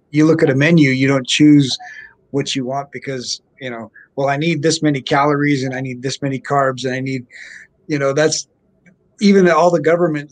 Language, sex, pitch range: English, male, 135-175 Hz